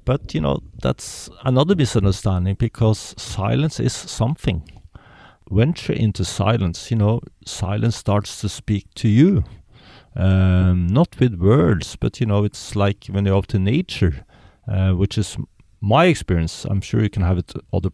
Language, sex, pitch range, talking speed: English, male, 90-115 Hz, 155 wpm